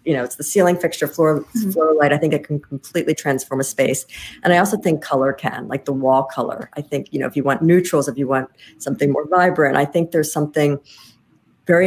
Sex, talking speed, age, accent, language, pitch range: female, 235 wpm, 50-69, American, English, 130-155 Hz